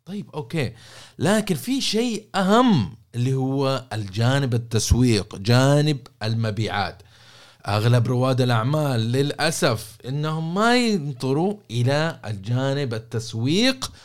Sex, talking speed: male, 95 wpm